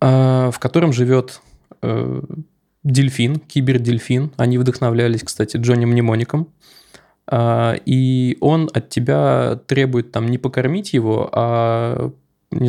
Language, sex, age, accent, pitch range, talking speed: Russian, male, 20-39, native, 120-130 Hz, 100 wpm